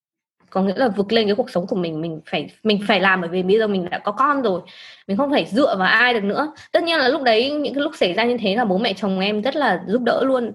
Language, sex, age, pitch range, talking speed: Vietnamese, female, 20-39, 205-275 Hz, 305 wpm